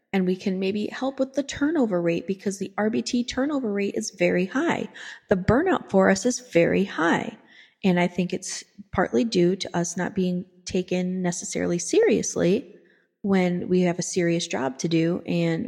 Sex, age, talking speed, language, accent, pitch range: female, 30-49, 175 wpm, English, American, 175-225 Hz